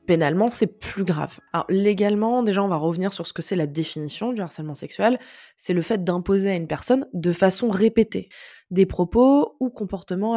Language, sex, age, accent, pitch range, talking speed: French, female, 20-39, French, 170-210 Hz, 190 wpm